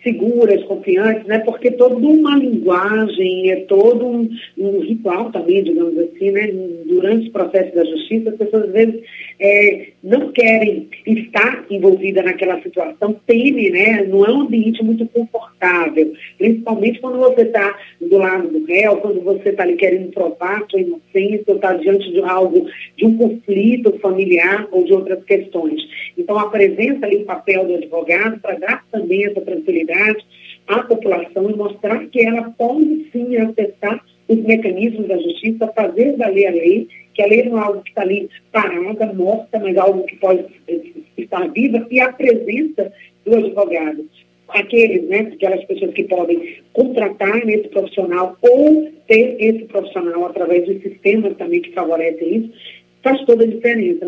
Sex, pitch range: female, 190-235 Hz